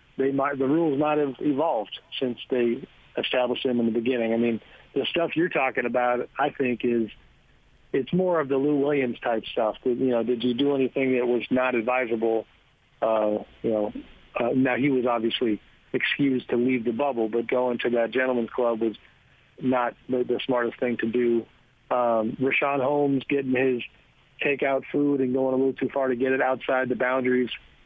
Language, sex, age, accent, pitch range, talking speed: English, male, 50-69, American, 120-140 Hz, 190 wpm